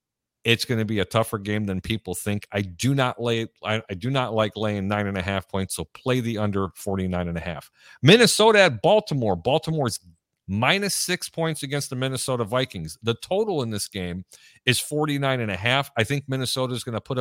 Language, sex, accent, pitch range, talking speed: English, male, American, 110-145 Hz, 210 wpm